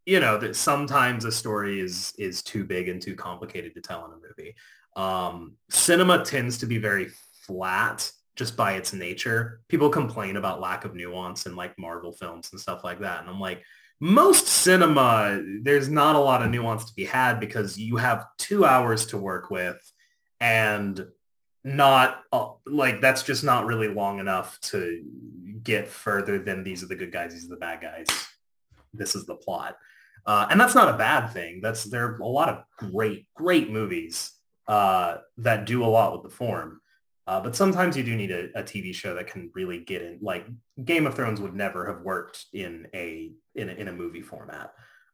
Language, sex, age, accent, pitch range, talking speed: English, male, 30-49, American, 95-130 Hz, 195 wpm